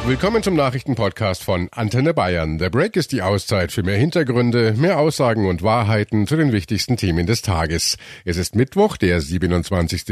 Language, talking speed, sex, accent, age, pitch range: German, 170 wpm, male, German, 50-69, 95-145 Hz